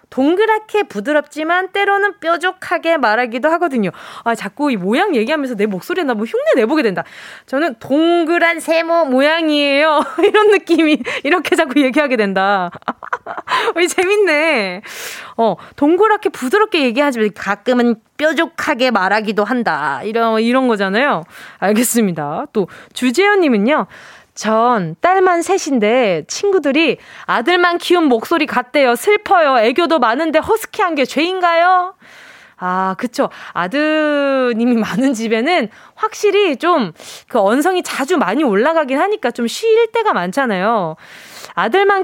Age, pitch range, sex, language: 20-39, 230-345 Hz, female, Korean